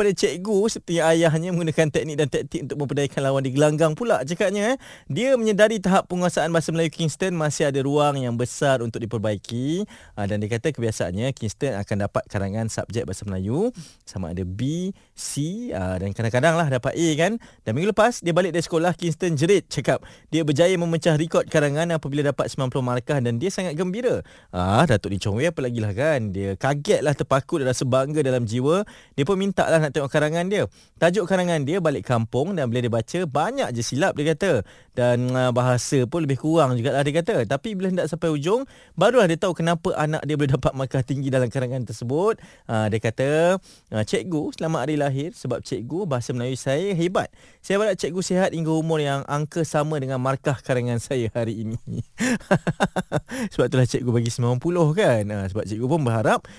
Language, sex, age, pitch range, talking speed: Malay, male, 20-39, 120-165 Hz, 185 wpm